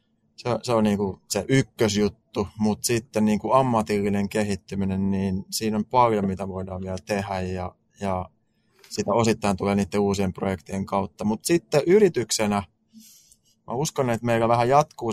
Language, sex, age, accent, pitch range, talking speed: Finnish, male, 20-39, native, 100-115 Hz, 155 wpm